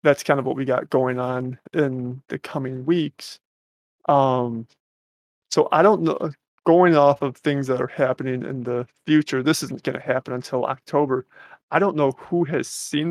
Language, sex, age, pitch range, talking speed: English, male, 20-39, 125-150 Hz, 180 wpm